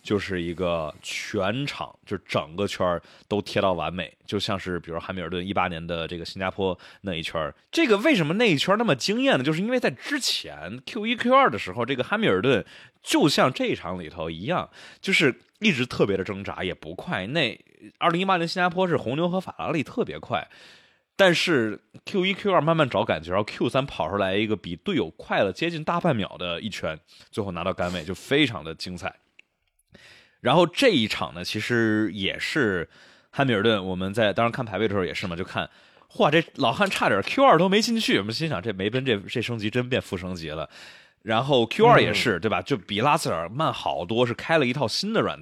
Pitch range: 95-155 Hz